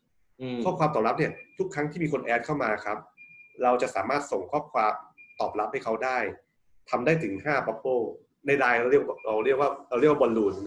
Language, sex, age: Thai, male, 30-49